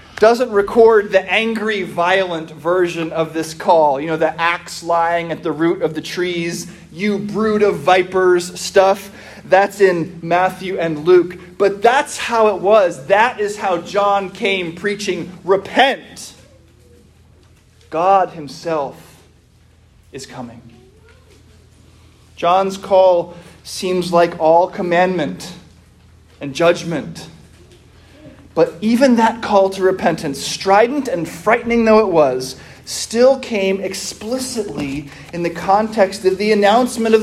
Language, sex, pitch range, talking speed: English, male, 165-215 Hz, 120 wpm